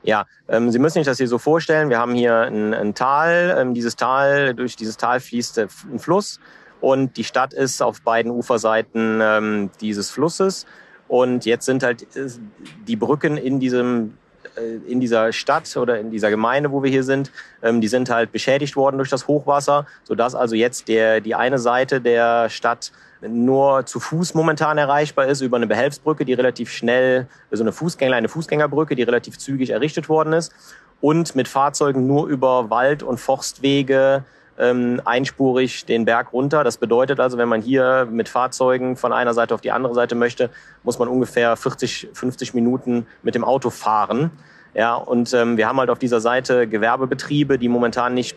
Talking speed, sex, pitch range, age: 180 wpm, male, 115-135 Hz, 40-59